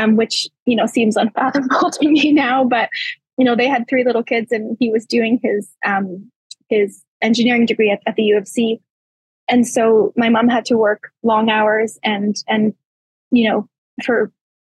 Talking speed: 190 wpm